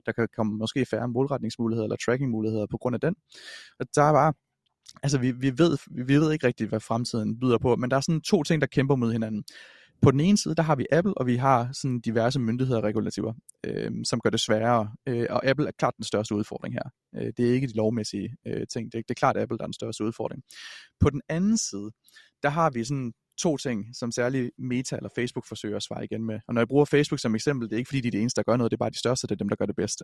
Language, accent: Danish, native